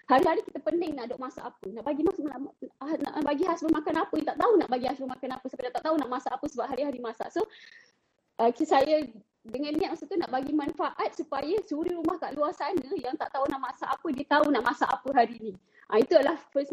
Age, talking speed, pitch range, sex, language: 20-39, 245 wpm, 240-300 Hz, female, Malay